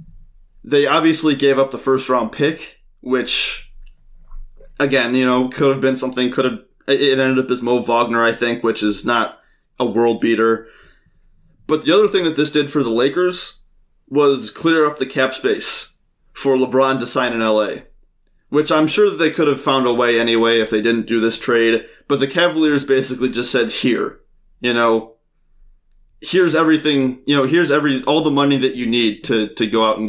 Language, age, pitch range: English, 20-39, 115-135 Hz